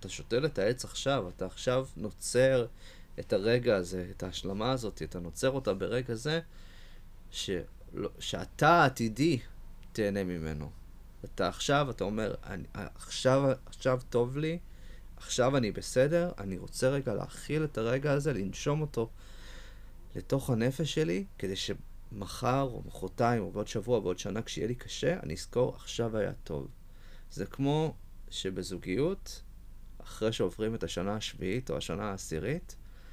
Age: 30-49